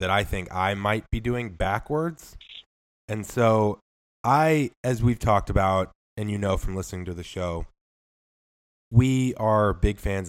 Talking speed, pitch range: 155 wpm, 85-110 Hz